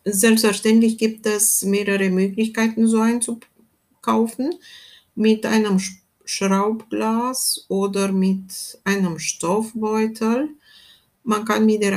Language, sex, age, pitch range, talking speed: German, female, 60-79, 190-225 Hz, 90 wpm